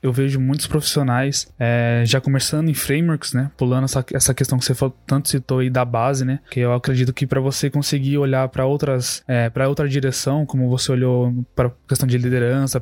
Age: 20-39